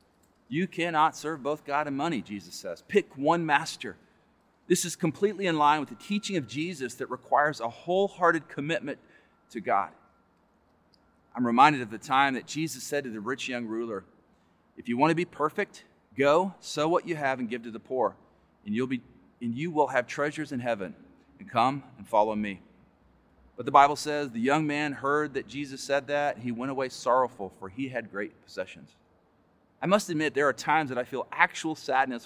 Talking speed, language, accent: 195 wpm, English, American